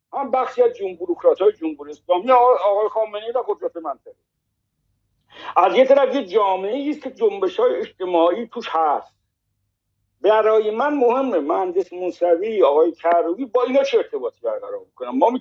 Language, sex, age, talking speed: Persian, male, 60-79, 135 wpm